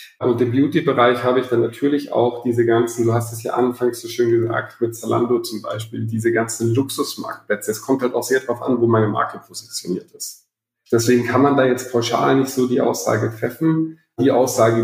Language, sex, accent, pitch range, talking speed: English, male, German, 115-130 Hz, 200 wpm